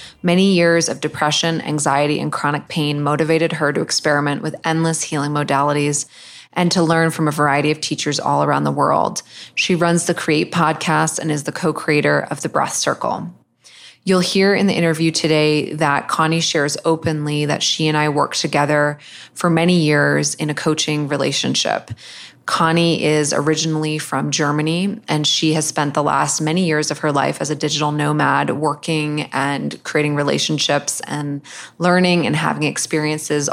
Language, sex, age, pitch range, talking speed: English, female, 20-39, 145-160 Hz, 165 wpm